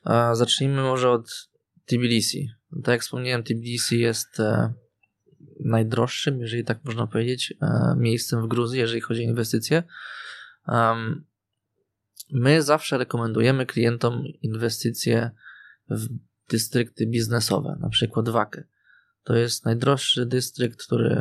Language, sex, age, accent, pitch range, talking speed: Polish, male, 20-39, native, 115-130 Hz, 105 wpm